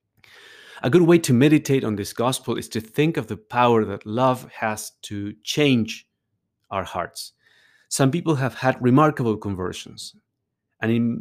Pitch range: 105-130 Hz